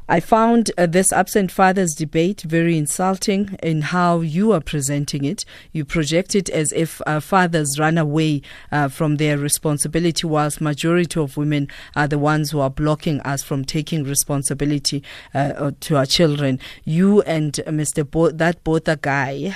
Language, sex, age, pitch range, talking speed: English, female, 40-59, 145-170 Hz, 165 wpm